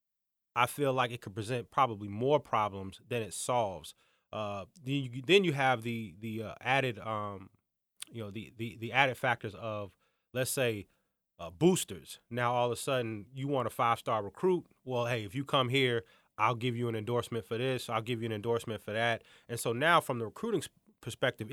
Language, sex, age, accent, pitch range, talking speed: English, male, 20-39, American, 115-140 Hz, 200 wpm